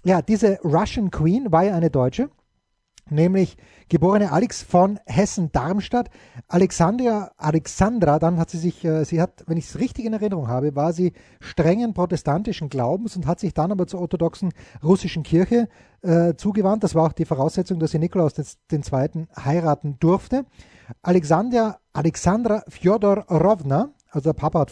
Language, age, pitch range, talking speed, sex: German, 30-49, 160-210 Hz, 160 wpm, male